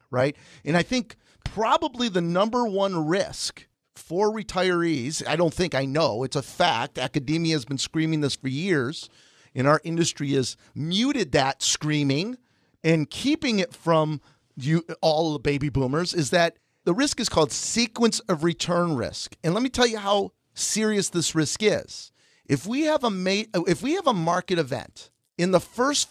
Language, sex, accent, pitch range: English, male, American, 145-190 Hz